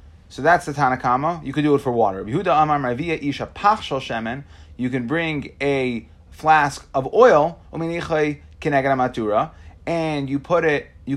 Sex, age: male, 30-49